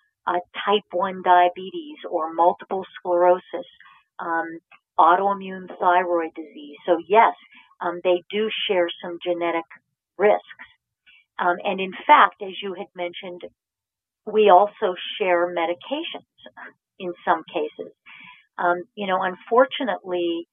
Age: 50-69